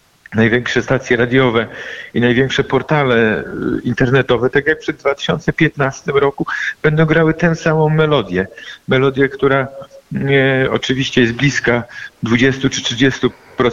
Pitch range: 125-145 Hz